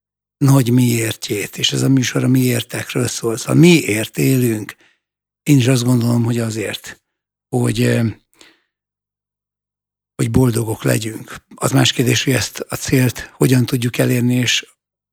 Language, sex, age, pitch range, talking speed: Hungarian, male, 60-79, 115-140 Hz, 130 wpm